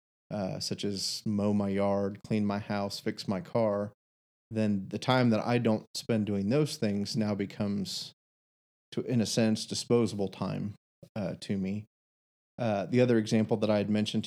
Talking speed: 170 wpm